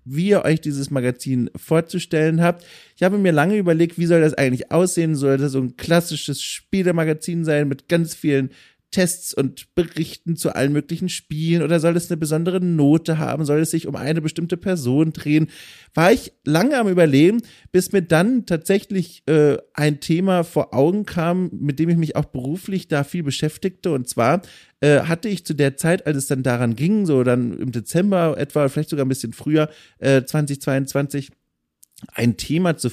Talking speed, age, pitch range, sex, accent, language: 185 wpm, 30-49, 140-170 Hz, male, German, German